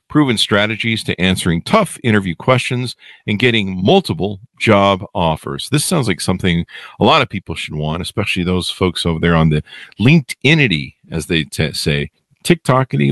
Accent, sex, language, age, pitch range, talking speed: American, male, English, 50-69, 90-135 Hz, 160 wpm